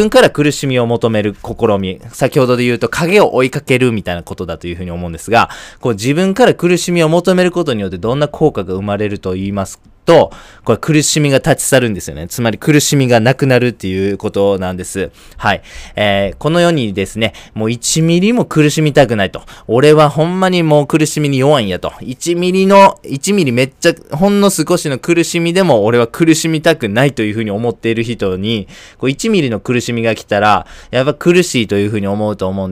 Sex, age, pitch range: male, 20-39, 100-145 Hz